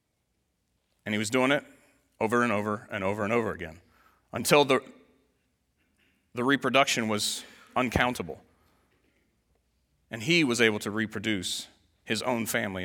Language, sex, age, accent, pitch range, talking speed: English, male, 30-49, American, 110-155 Hz, 130 wpm